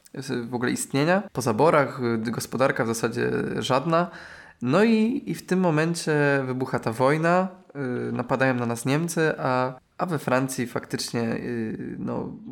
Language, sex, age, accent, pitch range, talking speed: Polish, male, 20-39, native, 125-165 Hz, 135 wpm